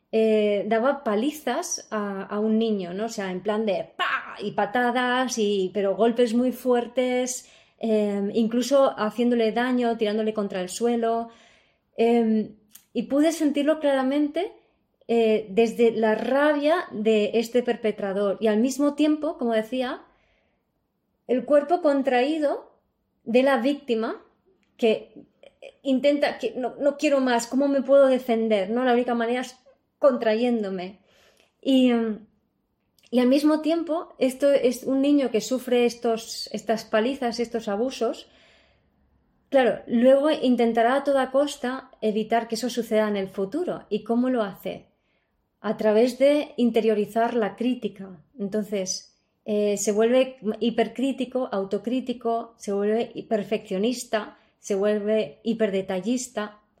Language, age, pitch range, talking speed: Spanish, 20-39, 215-260 Hz, 125 wpm